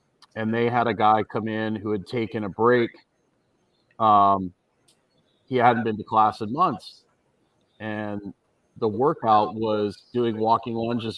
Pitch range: 115-140 Hz